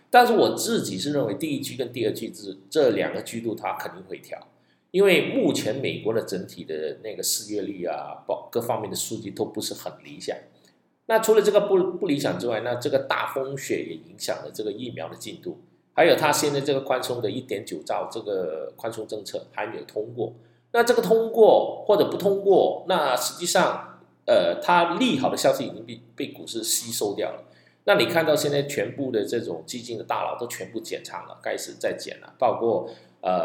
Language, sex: Chinese, male